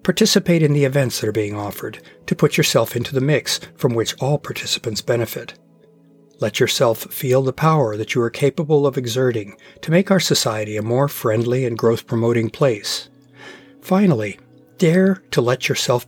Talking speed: 170 wpm